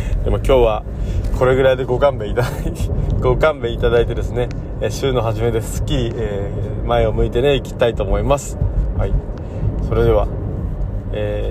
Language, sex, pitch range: Japanese, male, 100-125 Hz